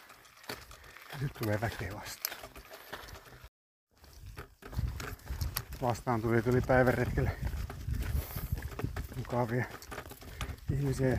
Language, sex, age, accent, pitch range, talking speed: Finnish, male, 60-79, native, 105-130 Hz, 55 wpm